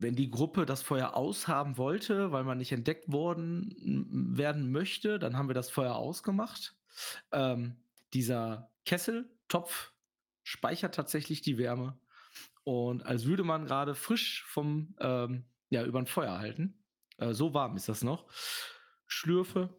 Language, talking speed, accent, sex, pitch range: German, 145 wpm, German, male, 110-150 Hz